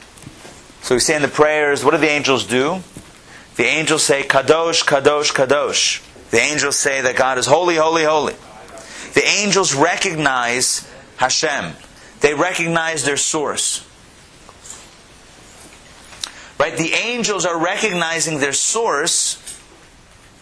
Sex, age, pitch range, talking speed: male, 30-49, 140-180 Hz, 120 wpm